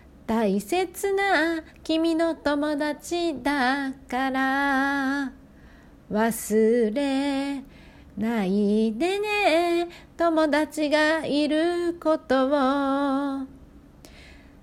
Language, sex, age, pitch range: Japanese, female, 40-59, 265-375 Hz